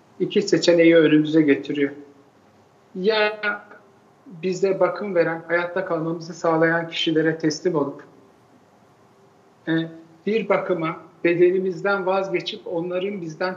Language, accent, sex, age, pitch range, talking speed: Turkish, native, male, 50-69, 165-205 Hz, 90 wpm